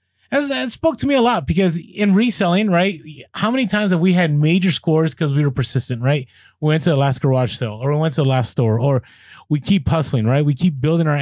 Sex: male